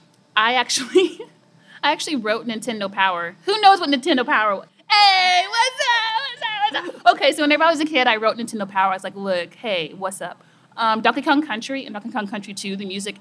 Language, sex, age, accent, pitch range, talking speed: English, female, 30-49, American, 200-295 Hz, 225 wpm